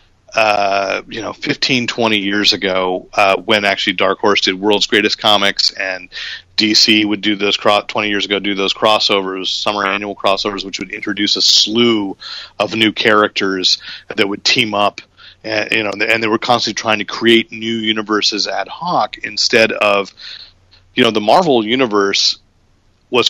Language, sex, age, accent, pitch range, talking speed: English, male, 40-59, American, 95-110 Hz, 160 wpm